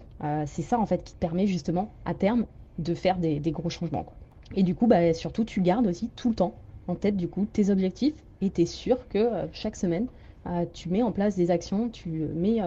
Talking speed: 245 wpm